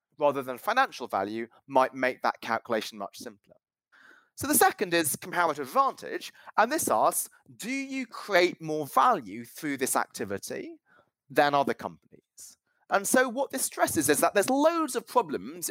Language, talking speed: English, 155 wpm